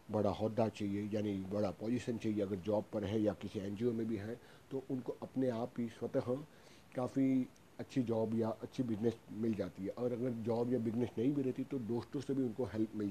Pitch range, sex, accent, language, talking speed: 105-130 Hz, male, native, Hindi, 215 wpm